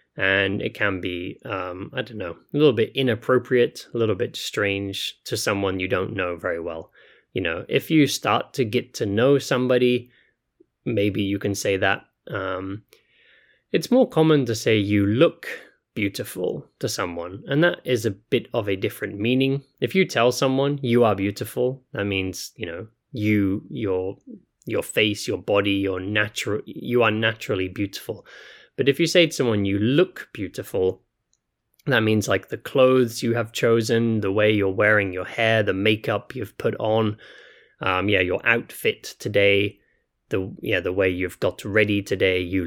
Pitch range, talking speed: 100-125 Hz, 170 wpm